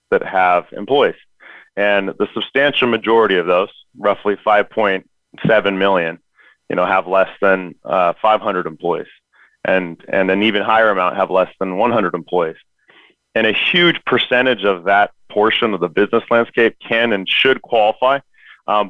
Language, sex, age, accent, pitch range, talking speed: English, male, 30-49, American, 95-115 Hz, 150 wpm